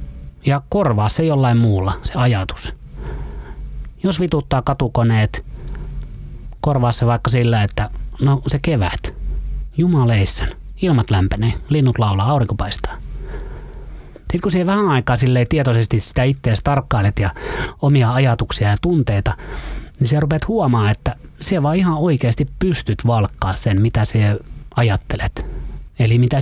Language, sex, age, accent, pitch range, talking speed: Finnish, male, 30-49, native, 105-140 Hz, 130 wpm